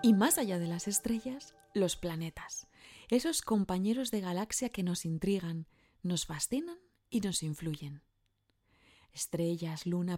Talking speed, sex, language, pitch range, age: 130 wpm, female, Spanish, 175-235 Hz, 20-39